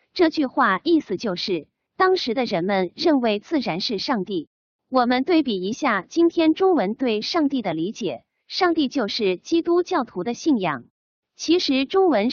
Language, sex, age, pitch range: Chinese, female, 30-49, 200-330 Hz